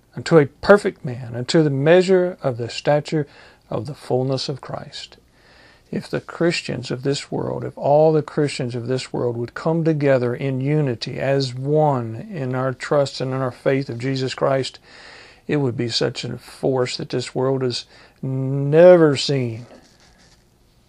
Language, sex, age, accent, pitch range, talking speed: English, male, 50-69, American, 125-155 Hz, 165 wpm